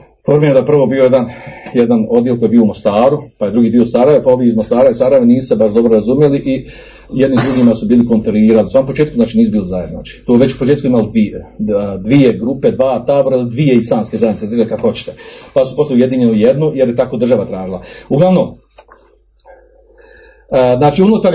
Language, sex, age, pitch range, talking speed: Croatian, male, 40-59, 115-180 Hz, 205 wpm